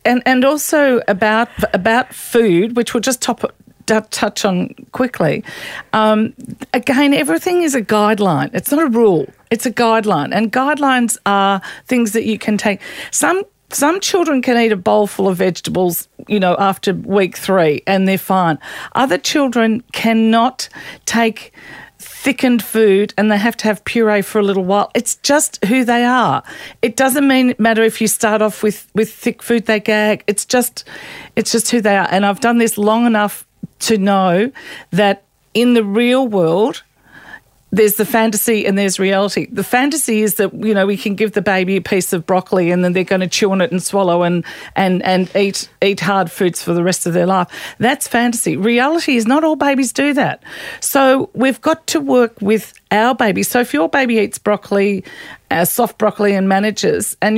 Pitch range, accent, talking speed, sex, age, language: 195-245 Hz, Australian, 190 wpm, female, 40-59, English